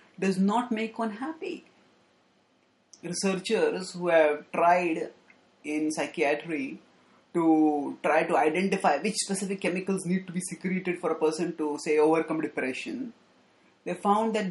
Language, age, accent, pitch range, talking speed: English, 30-49, Indian, 175-225 Hz, 130 wpm